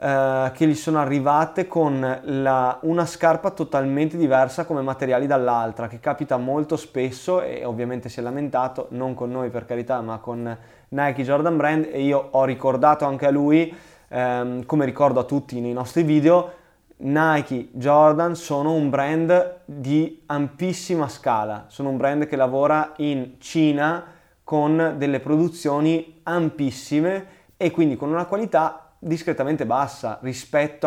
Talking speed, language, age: 140 wpm, Italian, 20-39